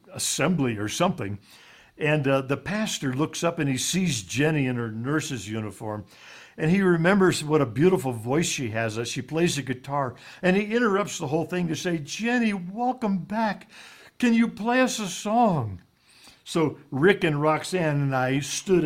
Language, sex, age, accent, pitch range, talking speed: English, male, 60-79, American, 130-185 Hz, 175 wpm